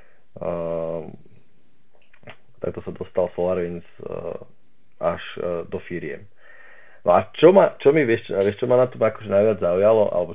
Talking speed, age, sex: 150 wpm, 40-59, male